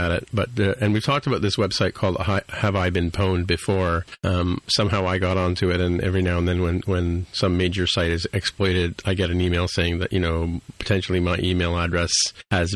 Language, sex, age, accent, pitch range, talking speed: English, male, 40-59, American, 90-110 Hz, 220 wpm